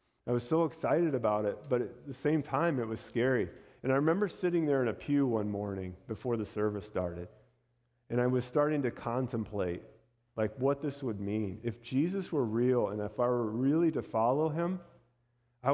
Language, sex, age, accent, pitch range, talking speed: English, male, 40-59, American, 105-130 Hz, 200 wpm